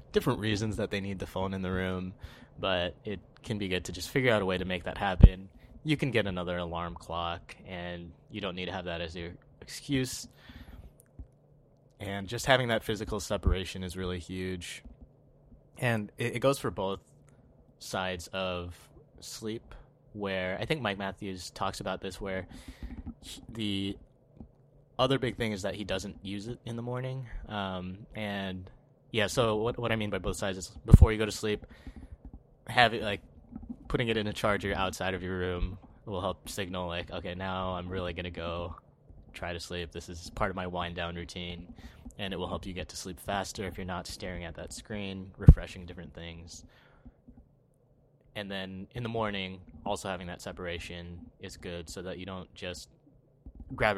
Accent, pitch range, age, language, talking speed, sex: American, 90-110 Hz, 20-39, English, 185 wpm, male